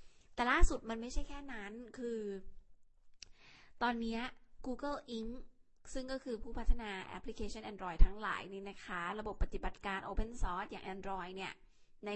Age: 20-39